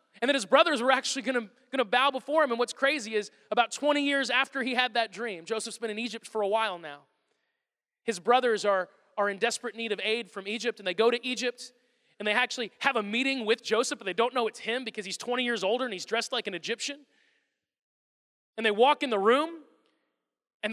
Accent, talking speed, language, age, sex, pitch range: American, 230 wpm, English, 20-39, male, 195-255 Hz